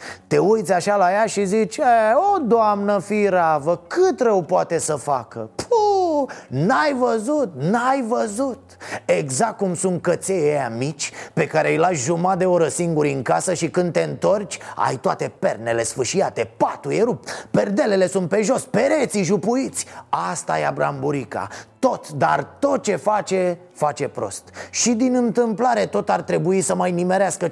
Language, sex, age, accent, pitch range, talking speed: Romanian, male, 30-49, native, 145-200 Hz, 155 wpm